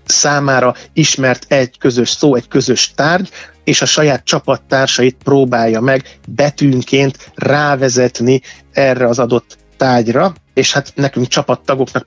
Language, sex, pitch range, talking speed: Hungarian, male, 120-145 Hz, 120 wpm